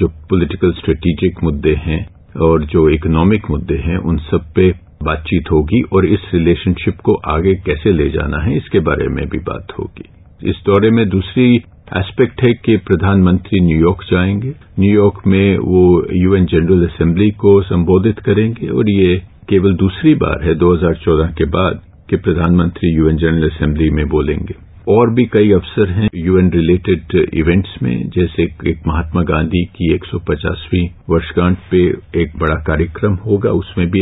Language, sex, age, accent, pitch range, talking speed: English, male, 50-69, Indian, 85-100 Hz, 150 wpm